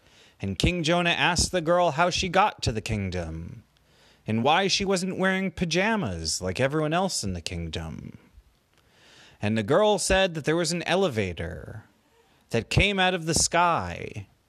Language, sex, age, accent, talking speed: English, male, 30-49, American, 160 wpm